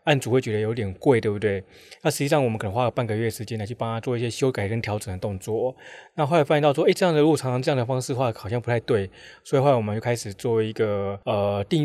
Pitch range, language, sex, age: 110-140 Hz, Chinese, male, 20-39